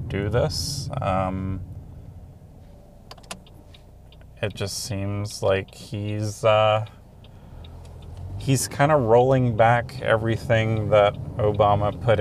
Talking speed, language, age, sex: 90 wpm, English, 30-49, male